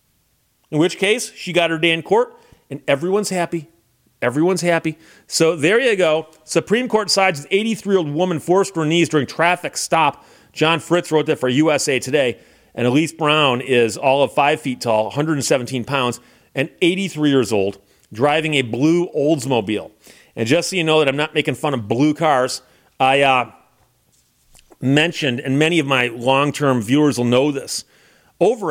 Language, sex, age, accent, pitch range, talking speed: English, male, 40-59, American, 130-170 Hz, 170 wpm